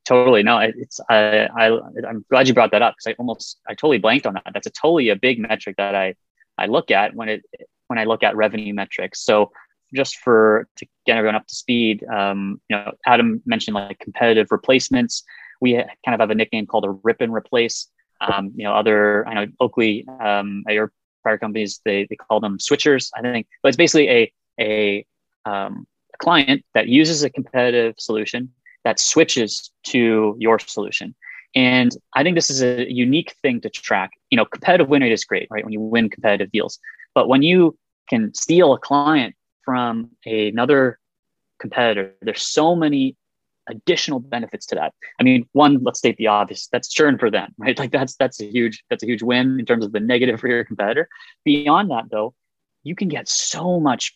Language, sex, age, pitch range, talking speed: English, male, 20-39, 110-135 Hz, 200 wpm